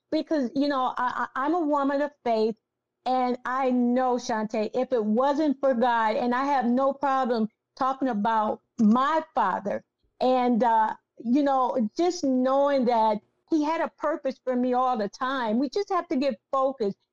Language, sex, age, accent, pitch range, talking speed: English, female, 50-69, American, 235-300 Hz, 170 wpm